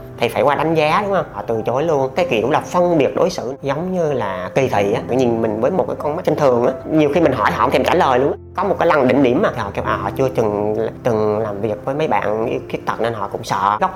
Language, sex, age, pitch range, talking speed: Vietnamese, female, 30-49, 115-150 Hz, 305 wpm